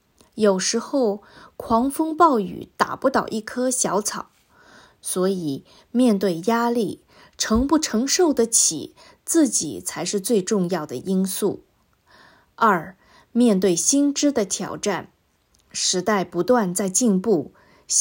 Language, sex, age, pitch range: Chinese, female, 20-39, 190-255 Hz